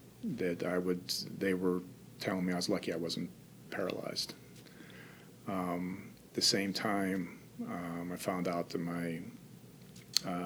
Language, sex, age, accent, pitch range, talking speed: English, male, 40-59, American, 85-95 Hz, 145 wpm